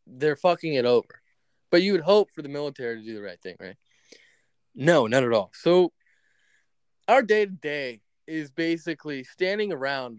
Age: 20-39